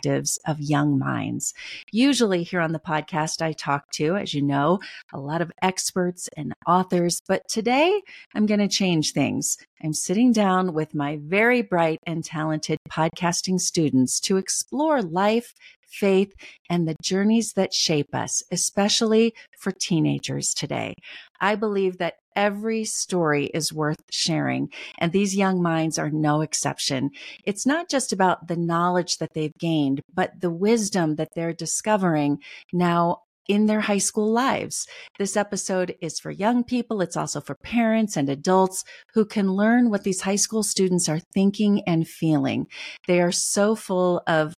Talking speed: 155 wpm